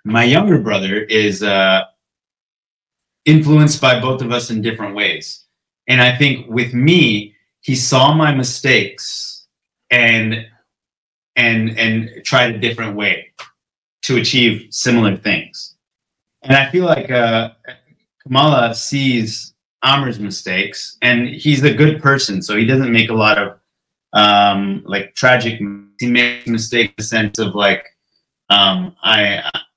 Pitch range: 110-130 Hz